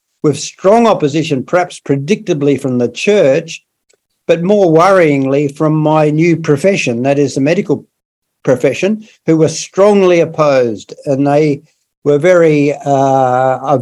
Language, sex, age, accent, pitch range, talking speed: English, male, 60-79, Australian, 140-170 Hz, 125 wpm